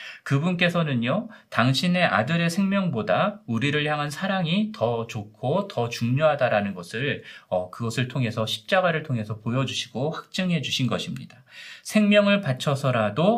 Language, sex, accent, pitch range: Korean, male, native, 125-180 Hz